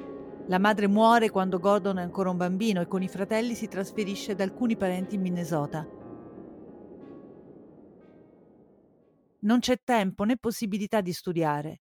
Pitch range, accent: 180-225 Hz, native